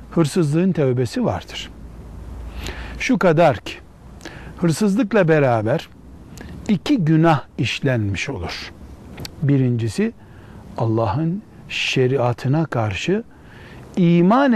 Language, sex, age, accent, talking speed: Turkish, male, 60-79, native, 70 wpm